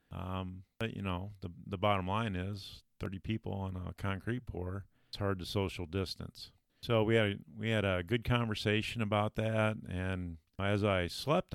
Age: 40-59